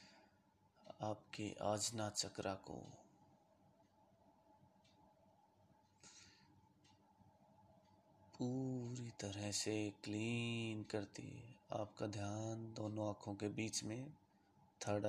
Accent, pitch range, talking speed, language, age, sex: native, 100-115 Hz, 70 wpm, Hindi, 30-49, male